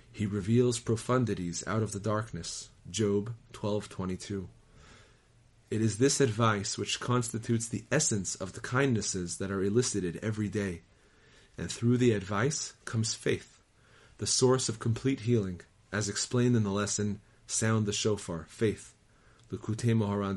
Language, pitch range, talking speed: English, 100-120 Hz, 140 wpm